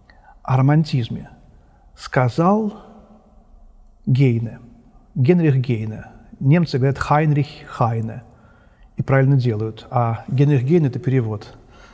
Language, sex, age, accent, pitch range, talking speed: Russian, male, 40-59, native, 120-155 Hz, 95 wpm